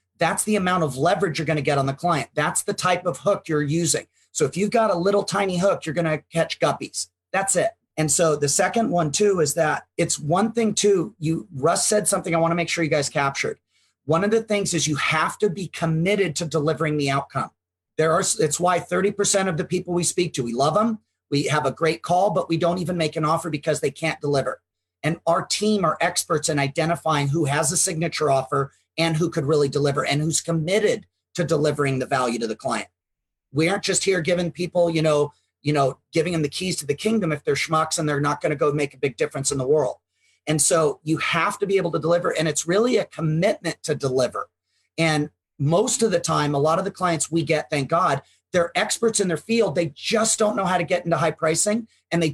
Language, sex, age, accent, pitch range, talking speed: English, male, 40-59, American, 150-185 Hz, 235 wpm